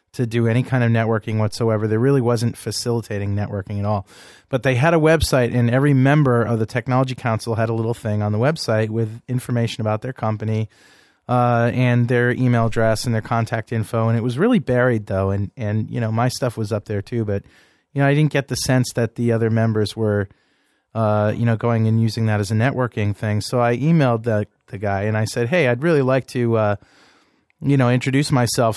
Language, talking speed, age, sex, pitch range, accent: English, 220 wpm, 30-49, male, 105-120 Hz, American